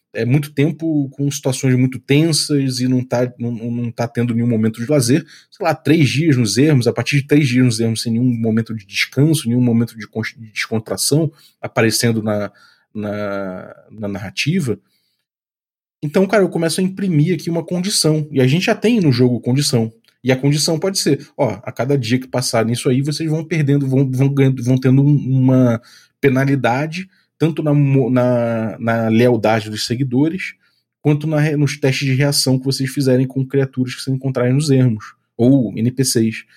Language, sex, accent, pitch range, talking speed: Portuguese, male, Brazilian, 125-165 Hz, 175 wpm